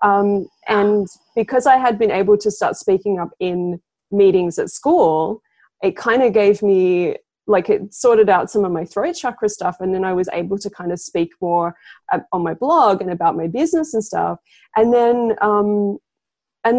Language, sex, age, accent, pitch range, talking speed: English, female, 20-39, Australian, 190-245 Hz, 195 wpm